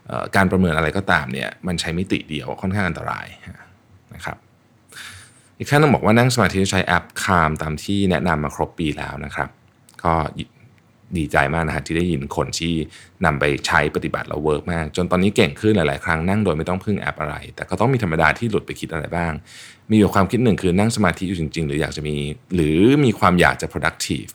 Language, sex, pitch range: Thai, male, 80-105 Hz